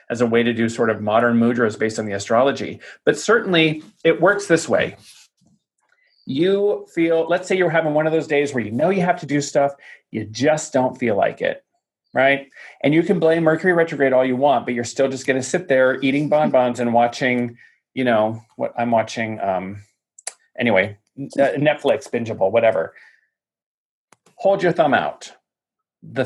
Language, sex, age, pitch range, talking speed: English, male, 30-49, 120-165 Hz, 185 wpm